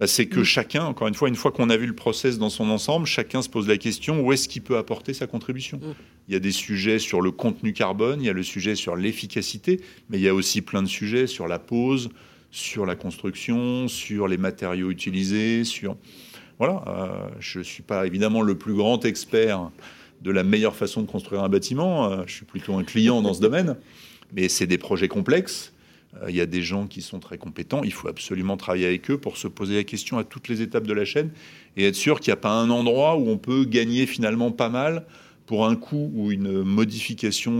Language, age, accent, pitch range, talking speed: French, 40-59, French, 95-120 Hz, 230 wpm